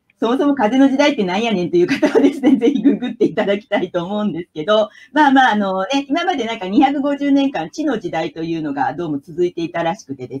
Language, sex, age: Japanese, female, 40-59